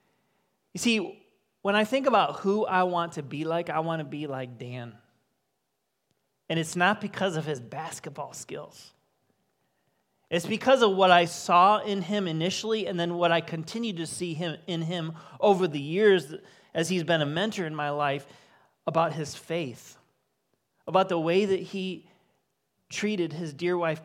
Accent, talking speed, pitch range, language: American, 165 wpm, 145-185 Hz, English